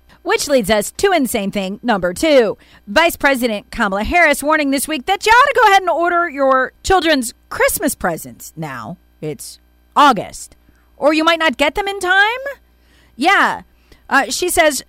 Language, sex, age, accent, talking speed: English, female, 40-59, American, 170 wpm